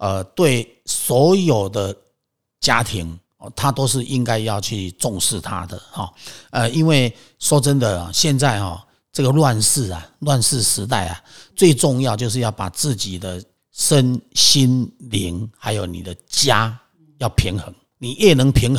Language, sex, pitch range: Chinese, male, 100-135 Hz